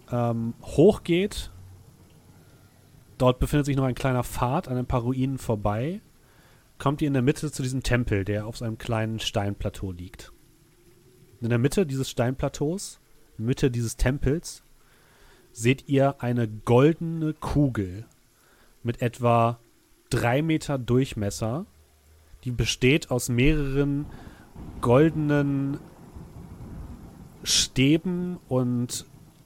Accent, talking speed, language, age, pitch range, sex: German, 110 wpm, German, 30-49, 115-145 Hz, male